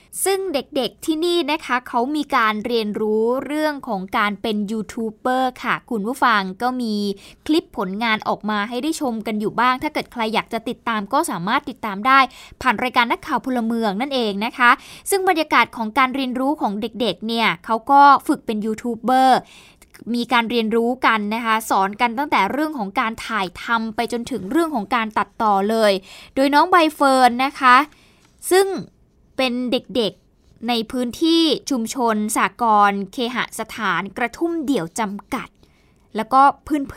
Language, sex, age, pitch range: Thai, female, 20-39, 225-280 Hz